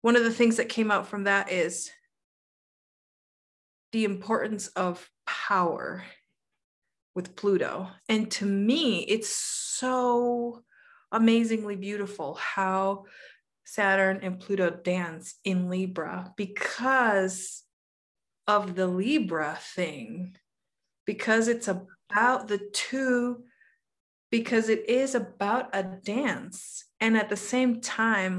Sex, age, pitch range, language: female, 20-39, 190-230 Hz, English